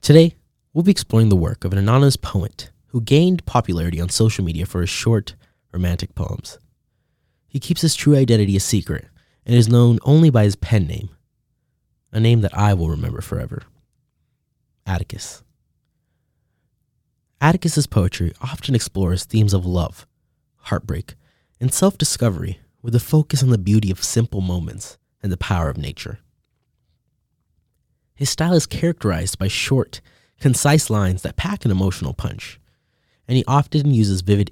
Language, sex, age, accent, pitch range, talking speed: English, male, 20-39, American, 95-135 Hz, 150 wpm